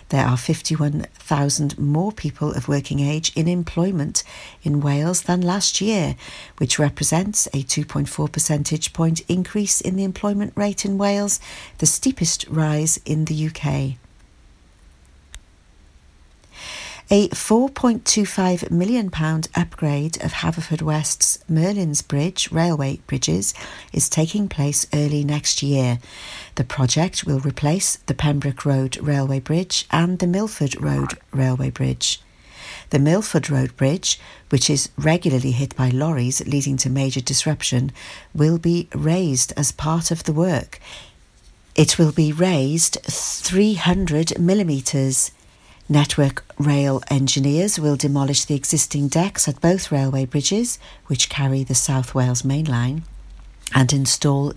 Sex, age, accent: female, 50-69, British